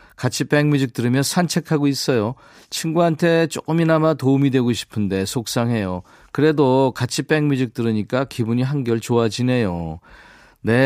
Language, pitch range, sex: Korean, 115-155 Hz, male